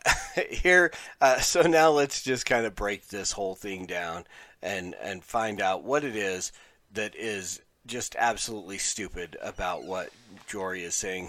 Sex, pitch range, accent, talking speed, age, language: male, 105-140 Hz, American, 160 wpm, 40-59, English